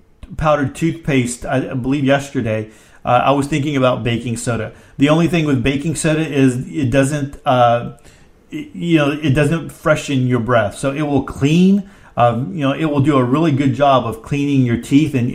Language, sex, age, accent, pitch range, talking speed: English, male, 40-59, American, 125-145 Hz, 190 wpm